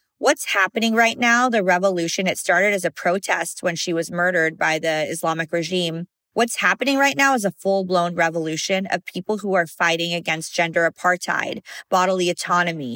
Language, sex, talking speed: English, female, 170 wpm